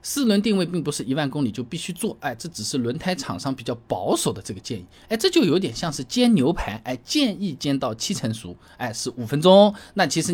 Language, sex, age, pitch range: Chinese, male, 20-39, 125-205 Hz